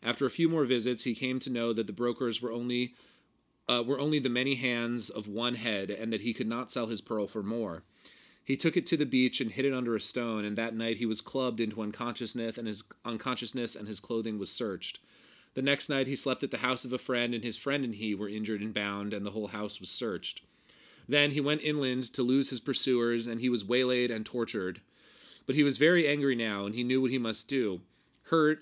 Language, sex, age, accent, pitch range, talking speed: English, male, 30-49, American, 110-135 Hz, 240 wpm